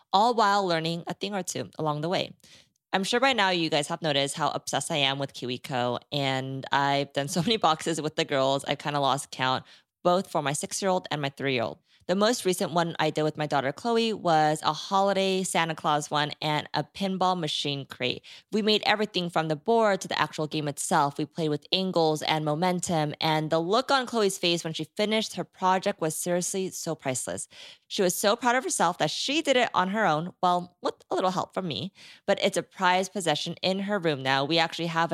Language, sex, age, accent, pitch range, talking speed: English, female, 20-39, American, 150-190 Hz, 220 wpm